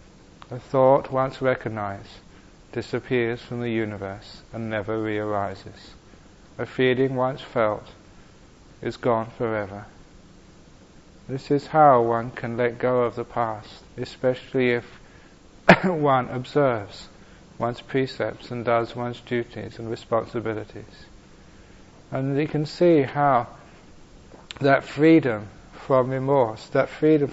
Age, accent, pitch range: 40-59, British, 110-130 Hz